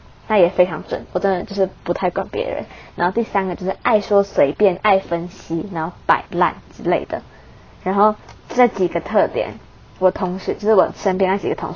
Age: 20-39